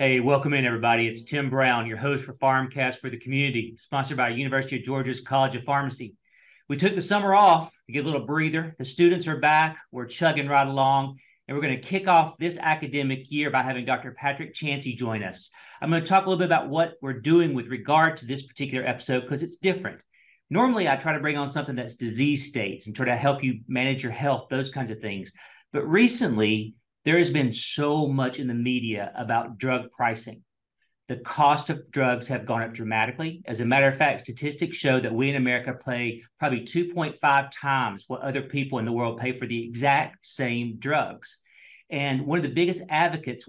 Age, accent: 40-59, American